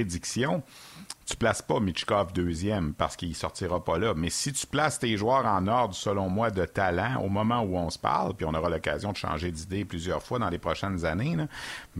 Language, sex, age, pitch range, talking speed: French, male, 50-69, 90-120 Hz, 220 wpm